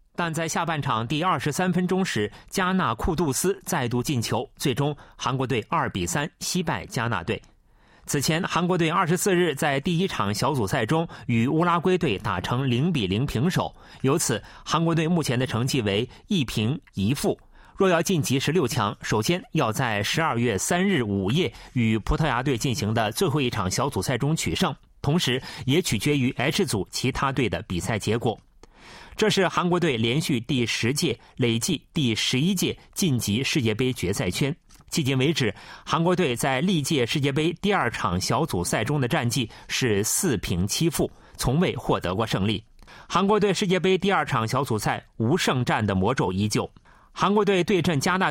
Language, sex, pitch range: Chinese, male, 120-170 Hz